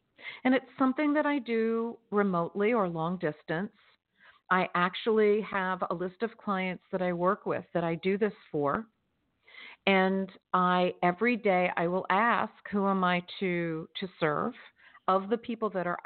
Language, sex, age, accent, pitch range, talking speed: English, female, 50-69, American, 175-225 Hz, 165 wpm